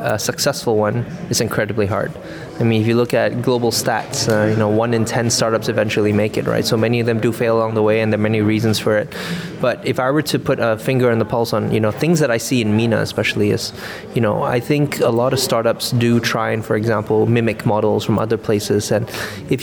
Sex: male